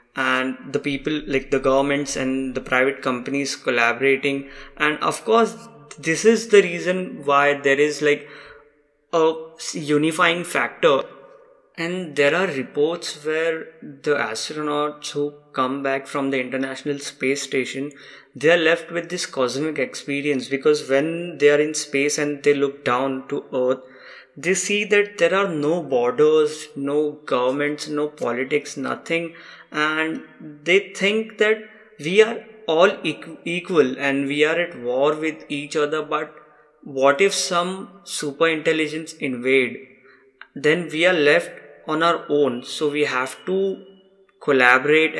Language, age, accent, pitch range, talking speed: English, 20-39, Indian, 140-170 Hz, 140 wpm